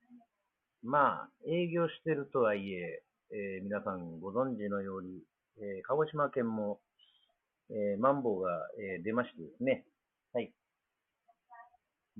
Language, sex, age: Japanese, male, 50-69